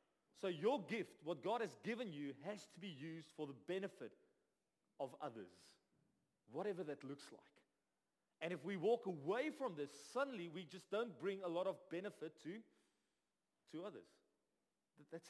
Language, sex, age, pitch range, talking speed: English, male, 40-59, 165-205 Hz, 160 wpm